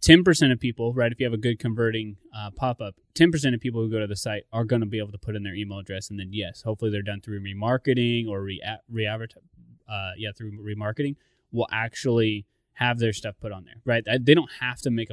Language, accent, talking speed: English, American, 225 wpm